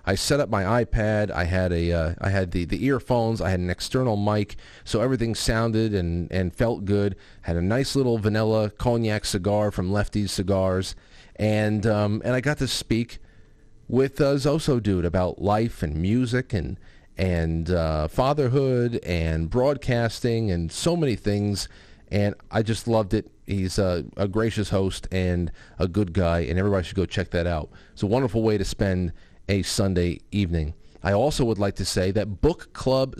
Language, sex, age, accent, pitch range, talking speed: English, male, 40-59, American, 95-120 Hz, 185 wpm